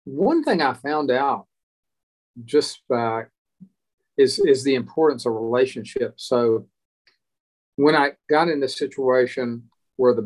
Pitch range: 115-140 Hz